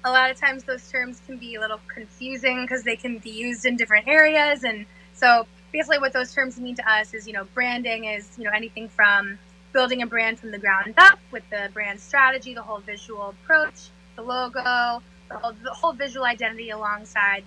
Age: 10-29